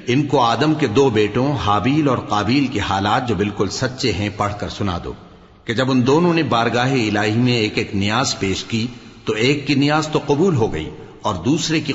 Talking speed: 215 wpm